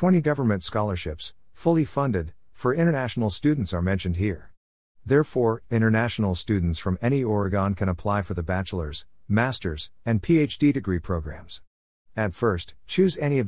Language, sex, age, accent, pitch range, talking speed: English, male, 50-69, American, 90-120 Hz, 140 wpm